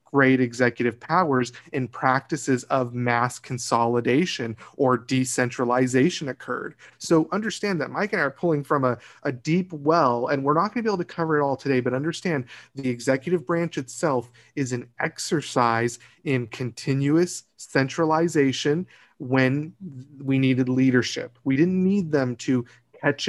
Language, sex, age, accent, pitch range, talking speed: English, male, 30-49, American, 125-150 Hz, 150 wpm